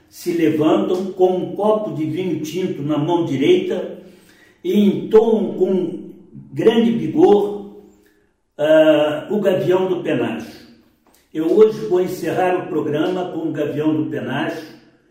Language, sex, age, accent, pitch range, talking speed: Portuguese, male, 60-79, Brazilian, 155-205 Hz, 125 wpm